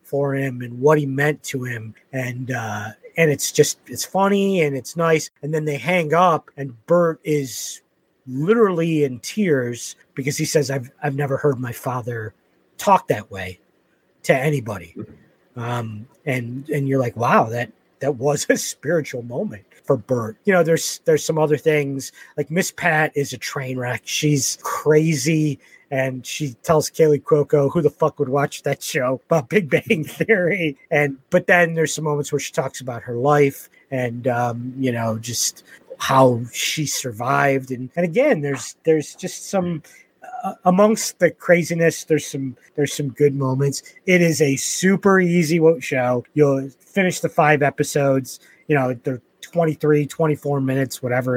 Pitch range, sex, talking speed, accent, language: 130-160 Hz, male, 170 wpm, American, English